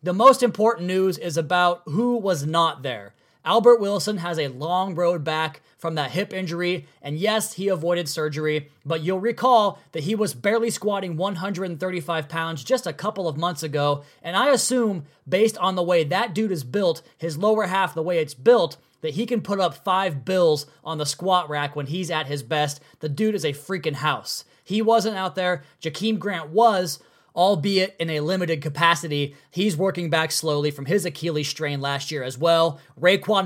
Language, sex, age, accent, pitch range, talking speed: English, male, 20-39, American, 155-205 Hz, 190 wpm